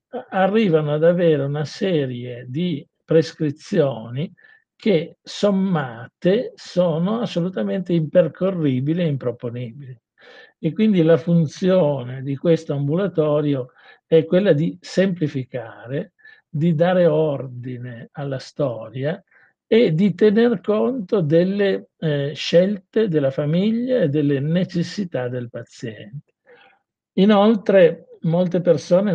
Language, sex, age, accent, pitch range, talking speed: Italian, male, 50-69, native, 140-185 Hz, 95 wpm